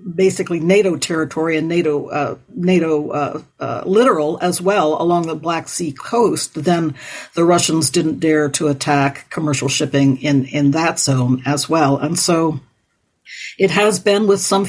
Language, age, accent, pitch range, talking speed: English, 60-79, American, 145-175 Hz, 160 wpm